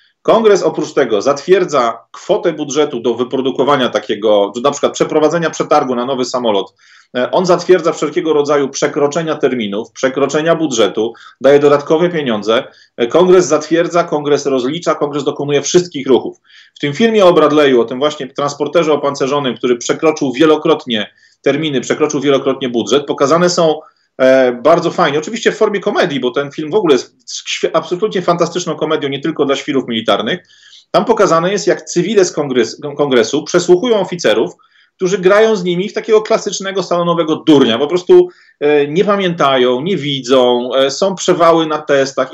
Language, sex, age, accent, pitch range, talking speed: Polish, male, 30-49, native, 140-180 Hz, 145 wpm